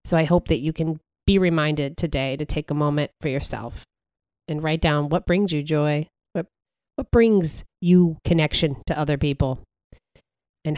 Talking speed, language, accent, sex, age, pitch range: 175 wpm, English, American, female, 30-49, 145-170 Hz